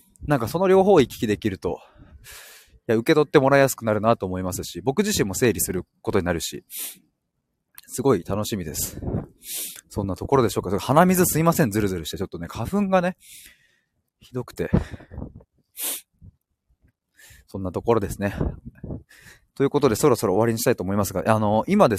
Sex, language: male, Japanese